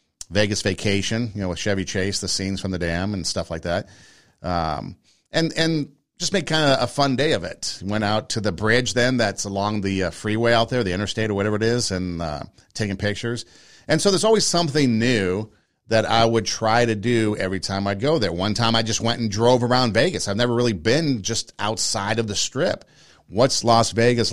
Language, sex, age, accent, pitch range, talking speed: English, male, 50-69, American, 95-120 Hz, 215 wpm